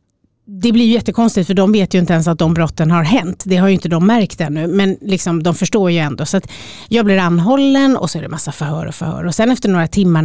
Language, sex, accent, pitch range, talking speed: Swedish, female, native, 155-195 Hz, 265 wpm